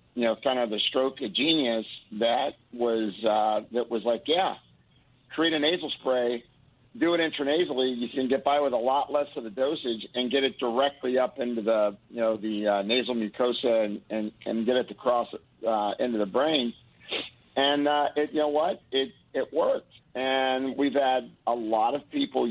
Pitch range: 115-145 Hz